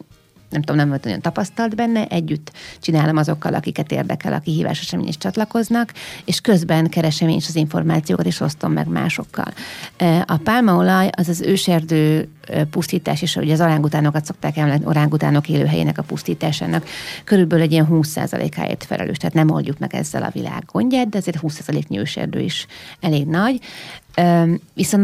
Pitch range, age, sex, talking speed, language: 155-195 Hz, 30-49, female, 155 wpm, Hungarian